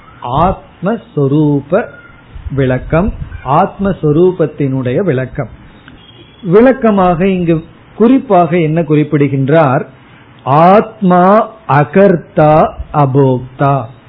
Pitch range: 140-180 Hz